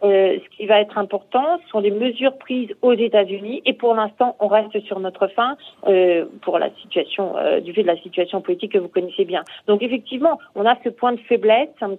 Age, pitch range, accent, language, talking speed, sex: 40-59, 200-260 Hz, French, French, 230 wpm, female